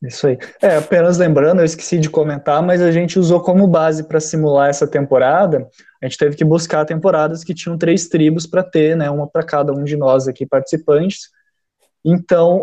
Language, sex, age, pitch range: Portuguese, male, 20-39, 145-195 Hz